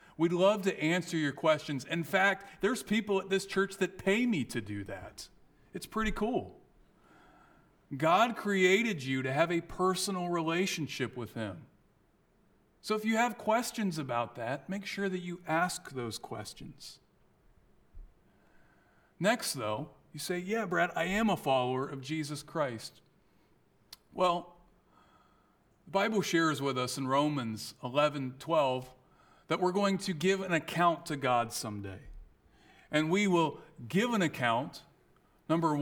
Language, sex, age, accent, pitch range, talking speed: English, male, 40-59, American, 140-190 Hz, 145 wpm